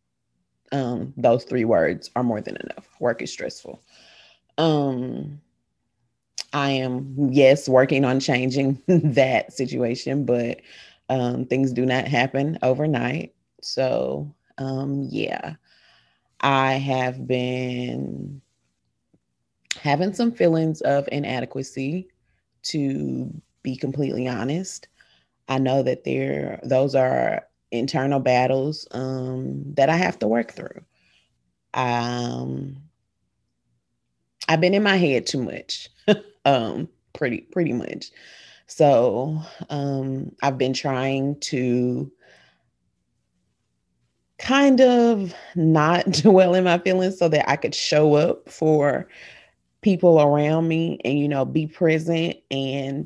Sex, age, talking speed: female, 30-49, 110 wpm